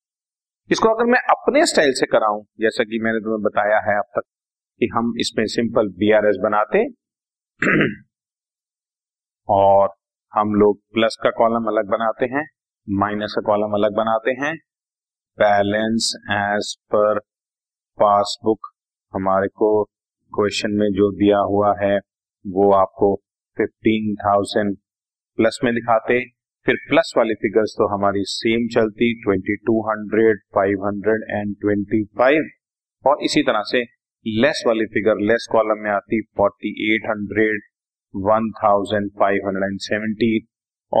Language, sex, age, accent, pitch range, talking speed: Hindi, male, 40-59, native, 100-115 Hz, 115 wpm